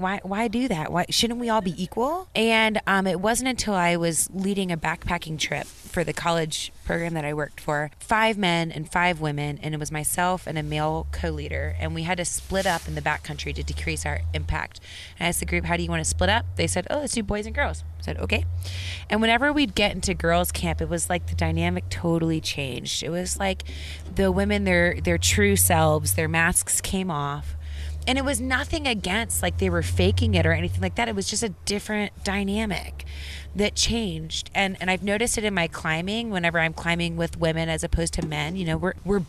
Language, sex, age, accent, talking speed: English, female, 20-39, American, 225 wpm